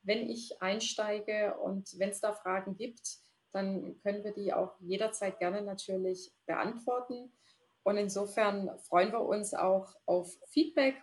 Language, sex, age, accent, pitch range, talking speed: German, female, 30-49, German, 190-230 Hz, 140 wpm